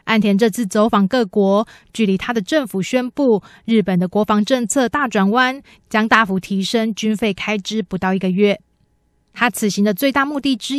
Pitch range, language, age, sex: 195-235 Hz, Chinese, 20-39, female